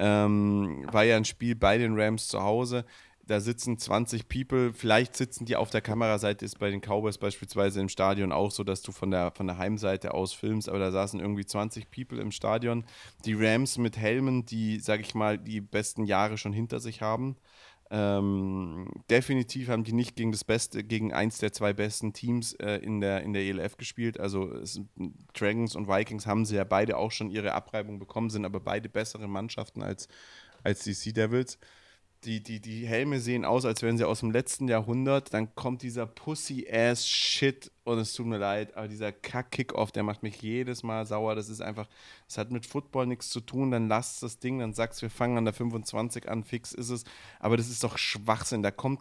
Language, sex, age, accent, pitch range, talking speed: German, male, 30-49, German, 105-120 Hz, 205 wpm